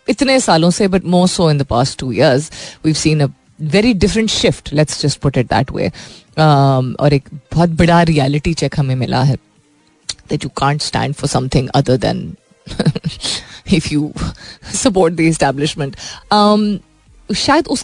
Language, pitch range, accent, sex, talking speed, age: Hindi, 145-185 Hz, native, female, 65 wpm, 30-49